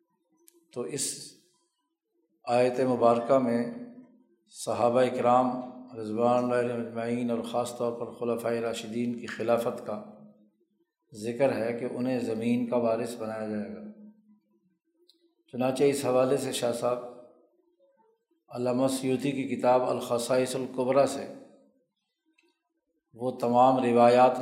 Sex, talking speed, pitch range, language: male, 105 wpm, 120-170 Hz, Urdu